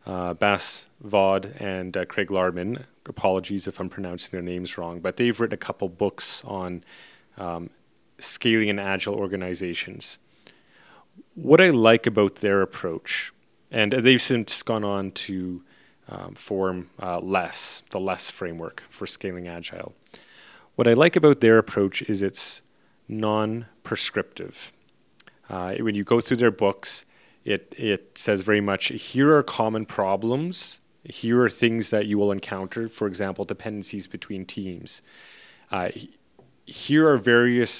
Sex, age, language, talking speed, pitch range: male, 30-49, English, 140 wpm, 95-115 Hz